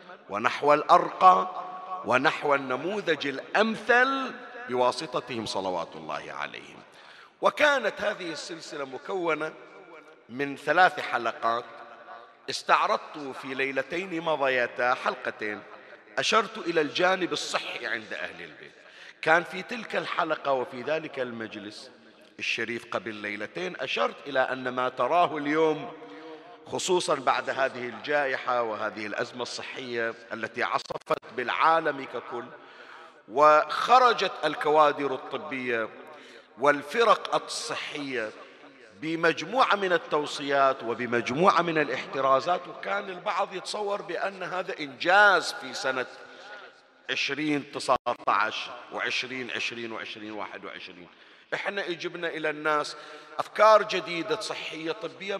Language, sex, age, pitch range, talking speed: Arabic, male, 50-69, 130-180 Hz, 95 wpm